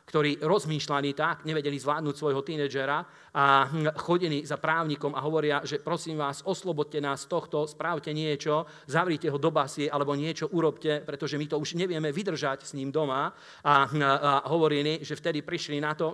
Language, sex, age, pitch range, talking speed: Slovak, male, 40-59, 140-160 Hz, 175 wpm